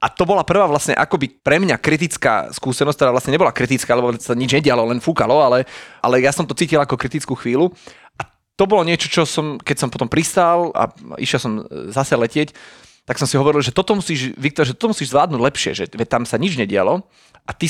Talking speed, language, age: 205 wpm, Slovak, 30-49